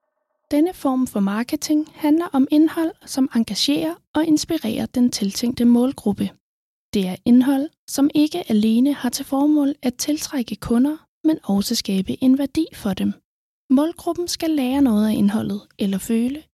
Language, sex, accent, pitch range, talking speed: Danish, female, native, 225-310 Hz, 150 wpm